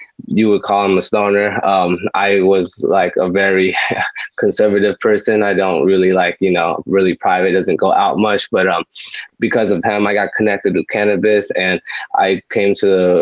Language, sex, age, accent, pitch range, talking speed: English, male, 20-39, American, 100-125 Hz, 185 wpm